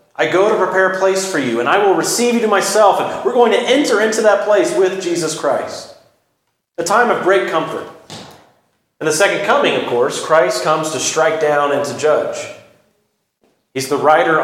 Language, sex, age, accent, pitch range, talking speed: English, male, 40-59, American, 160-215 Hz, 200 wpm